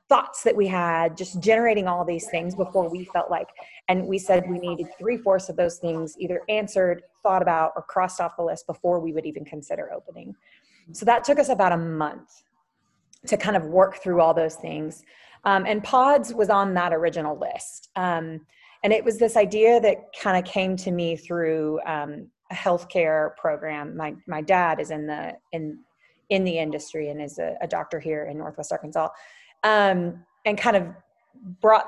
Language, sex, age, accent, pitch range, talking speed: English, female, 30-49, American, 165-205 Hz, 190 wpm